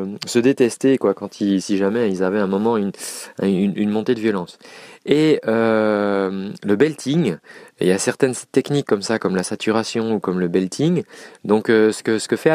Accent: French